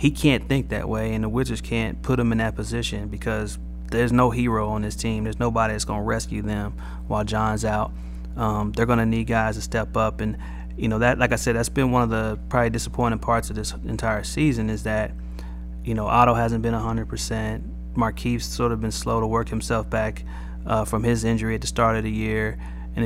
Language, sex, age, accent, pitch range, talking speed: English, male, 30-49, American, 85-115 Hz, 225 wpm